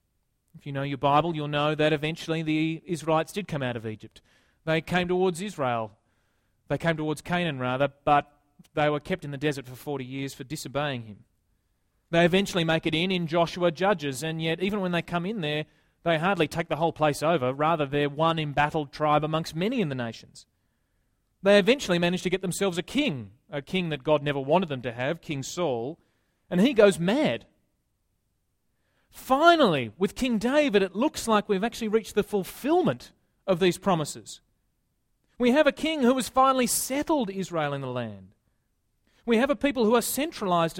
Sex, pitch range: male, 145-235 Hz